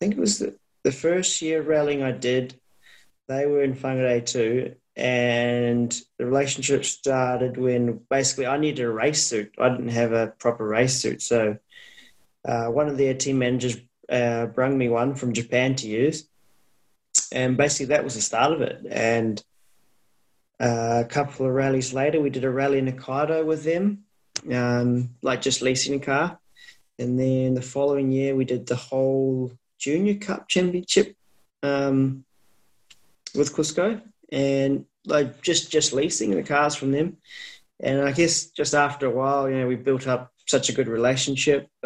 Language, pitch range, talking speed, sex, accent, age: English, 120-140 Hz, 170 wpm, male, Australian, 20-39